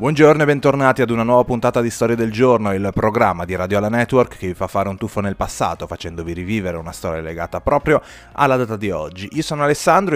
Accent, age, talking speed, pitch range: native, 30-49, 225 wpm, 100-140 Hz